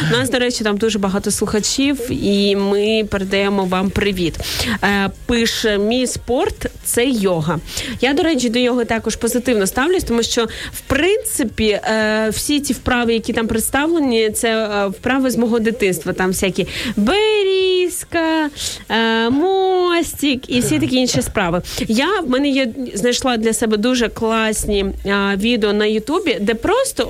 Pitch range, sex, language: 215-260 Hz, female, Ukrainian